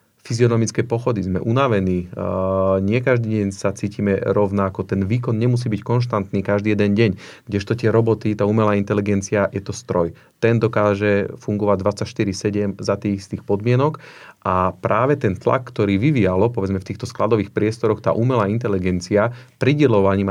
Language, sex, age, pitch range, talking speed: Slovak, male, 40-59, 100-115 Hz, 150 wpm